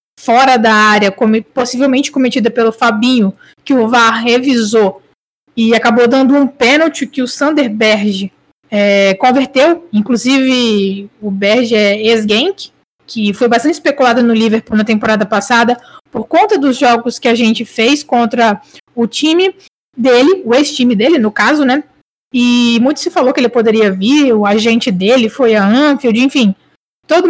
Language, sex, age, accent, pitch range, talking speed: Portuguese, female, 20-39, Brazilian, 225-275 Hz, 155 wpm